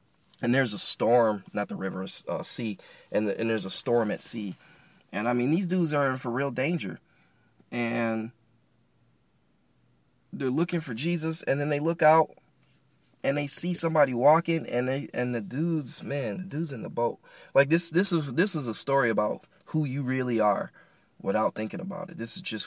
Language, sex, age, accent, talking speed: English, male, 20-39, American, 195 wpm